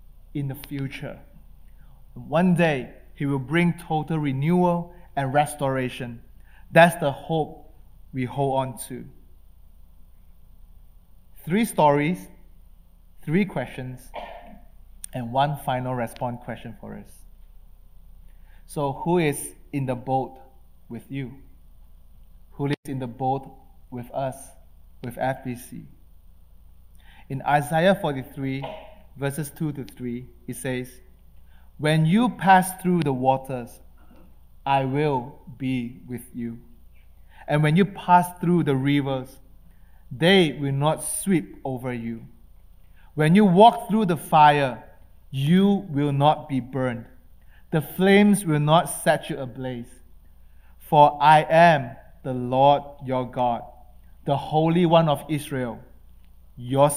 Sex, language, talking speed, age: male, English, 115 wpm, 20-39